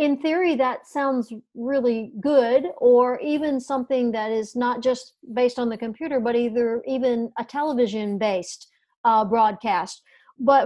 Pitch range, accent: 220-260 Hz, American